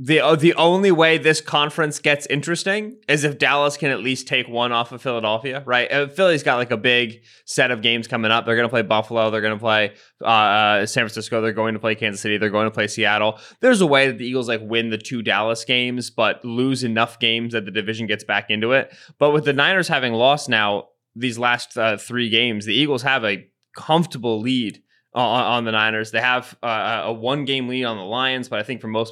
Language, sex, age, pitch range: English, male, 20-39, 110-130 Hz